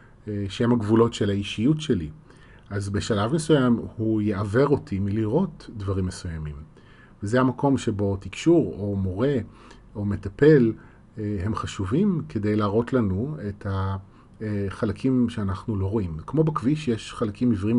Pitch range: 100-120 Hz